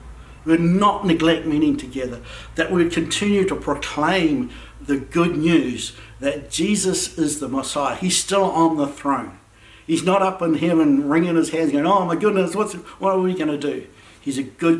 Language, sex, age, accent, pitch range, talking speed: English, male, 60-79, Australian, 125-165 Hz, 190 wpm